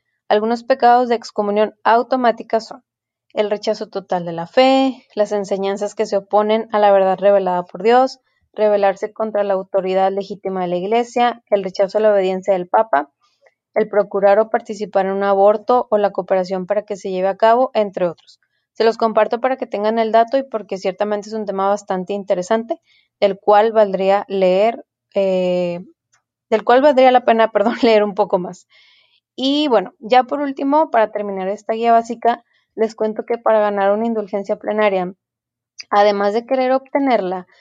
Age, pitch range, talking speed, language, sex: 20-39, 195-235 Hz, 175 wpm, Spanish, female